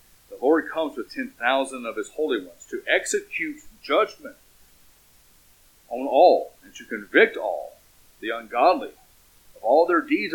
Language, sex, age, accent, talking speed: English, male, 40-59, American, 145 wpm